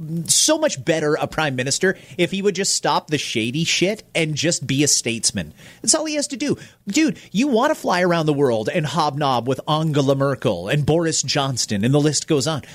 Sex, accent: male, American